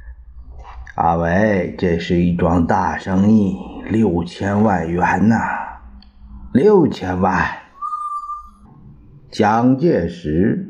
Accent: native